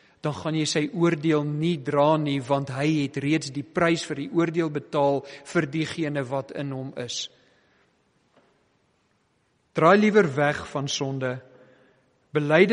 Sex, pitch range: male, 140-170 Hz